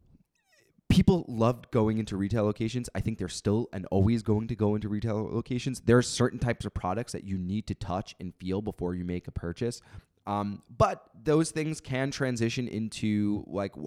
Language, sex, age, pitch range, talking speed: English, male, 20-39, 100-130 Hz, 190 wpm